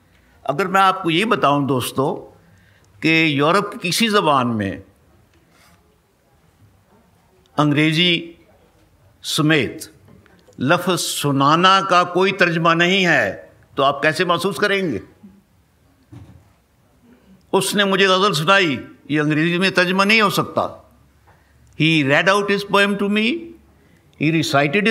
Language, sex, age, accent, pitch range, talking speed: Hindi, male, 60-79, native, 125-190 Hz, 110 wpm